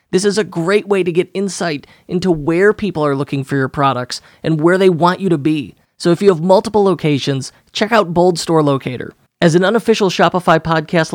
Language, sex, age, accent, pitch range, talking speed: English, male, 30-49, American, 145-185 Hz, 210 wpm